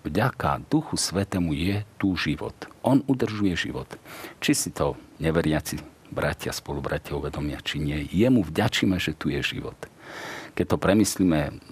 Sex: male